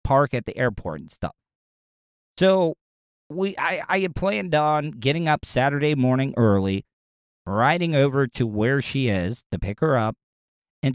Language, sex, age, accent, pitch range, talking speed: English, male, 40-59, American, 120-165 Hz, 160 wpm